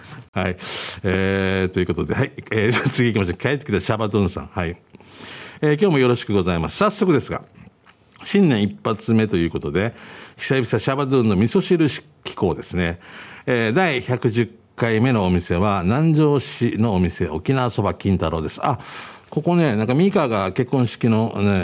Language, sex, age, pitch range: Japanese, male, 50-69, 100-150 Hz